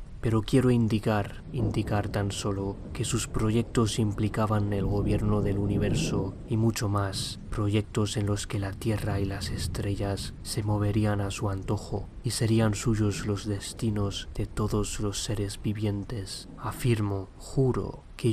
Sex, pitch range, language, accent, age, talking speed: male, 100-110 Hz, Spanish, Spanish, 20-39, 145 wpm